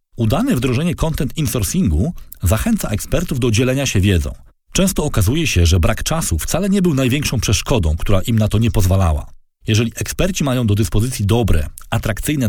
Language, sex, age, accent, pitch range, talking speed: Polish, male, 40-59, native, 100-140 Hz, 165 wpm